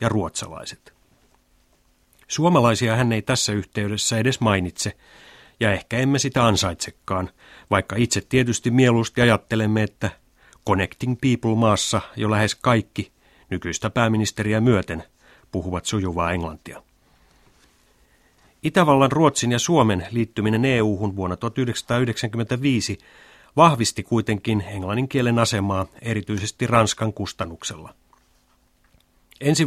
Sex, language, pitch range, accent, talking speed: male, Finnish, 100-125 Hz, native, 95 wpm